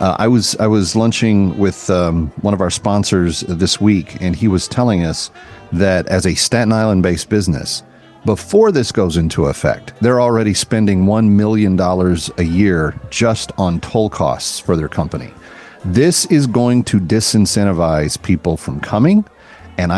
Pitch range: 90-110 Hz